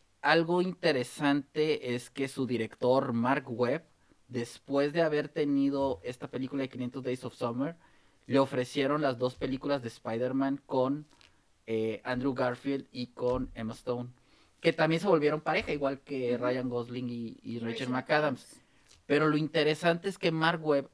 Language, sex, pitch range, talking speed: Spanish, male, 125-150 Hz, 155 wpm